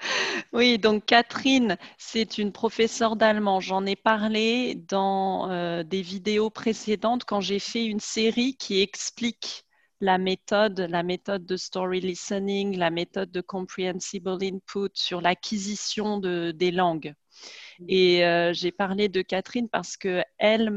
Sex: female